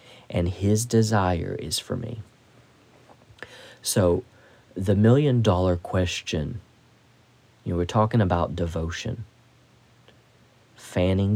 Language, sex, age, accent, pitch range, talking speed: English, male, 40-59, American, 90-115 Hz, 95 wpm